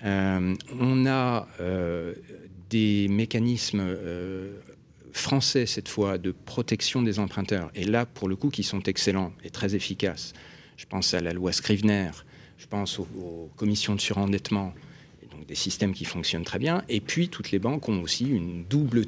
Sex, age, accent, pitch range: male, 40-59, French, 90-115 Hz